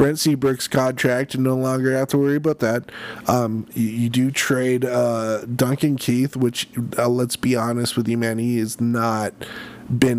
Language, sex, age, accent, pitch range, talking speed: English, male, 20-39, American, 115-135 Hz, 185 wpm